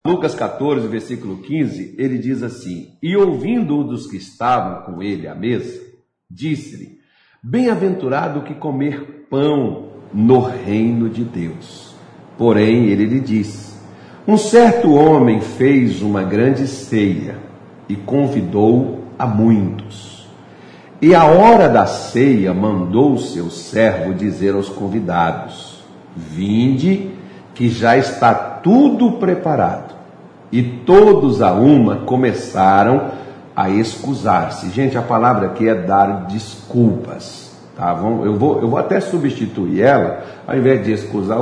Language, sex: Portuguese, male